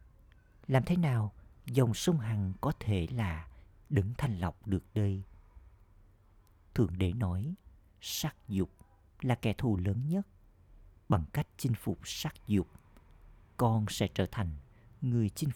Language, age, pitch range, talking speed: Vietnamese, 50-69, 90-115 Hz, 140 wpm